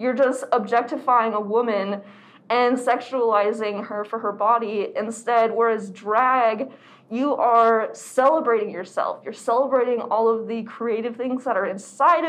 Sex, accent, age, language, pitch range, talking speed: female, American, 20-39, English, 215-270 Hz, 135 wpm